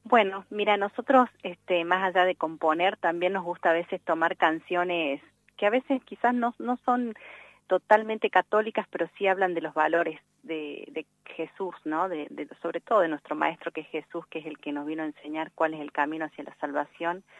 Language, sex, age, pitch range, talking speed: Spanish, female, 30-49, 160-190 Hz, 205 wpm